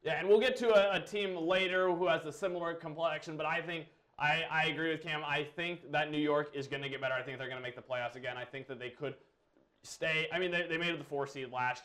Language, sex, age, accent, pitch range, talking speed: English, male, 20-39, American, 140-175 Hz, 290 wpm